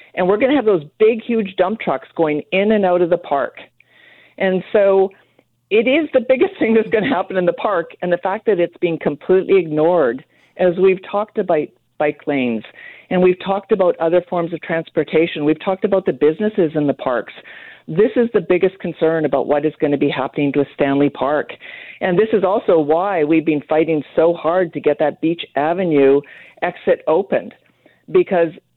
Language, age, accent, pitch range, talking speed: English, 50-69, American, 150-190 Hz, 195 wpm